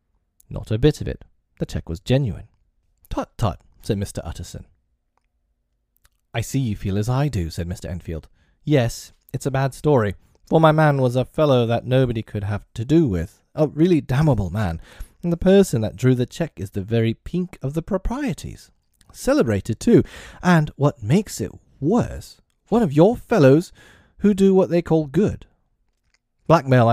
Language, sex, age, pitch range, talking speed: English, male, 30-49, 90-140 Hz, 175 wpm